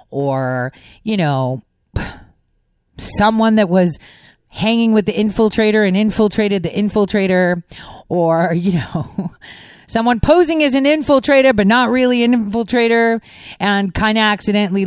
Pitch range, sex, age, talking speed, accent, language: 160-225 Hz, female, 30-49, 125 wpm, American, English